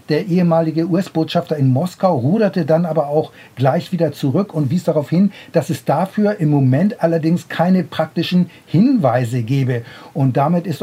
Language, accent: German, German